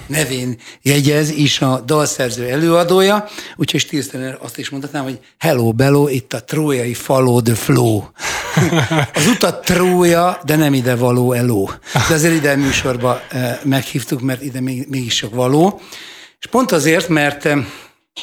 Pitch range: 125-155 Hz